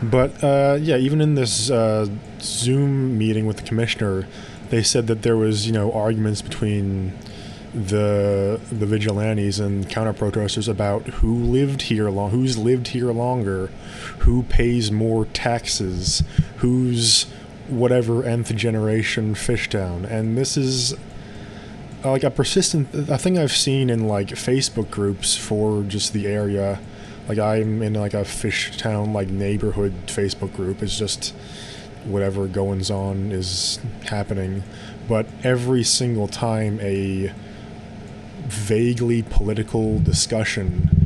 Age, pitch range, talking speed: 20-39, 100-120 Hz, 130 wpm